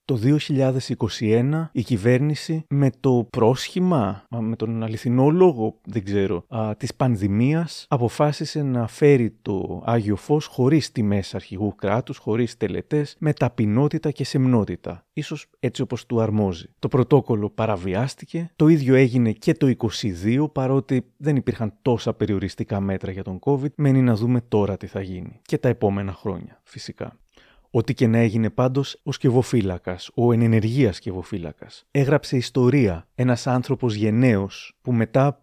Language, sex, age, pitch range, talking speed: Greek, male, 30-49, 110-135 Hz, 140 wpm